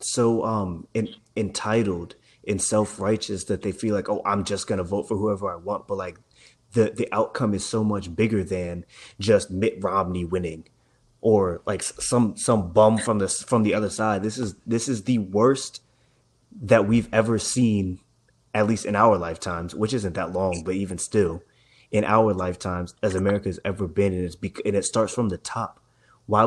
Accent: American